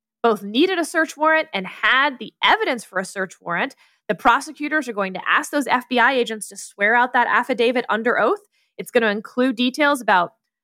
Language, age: English, 10-29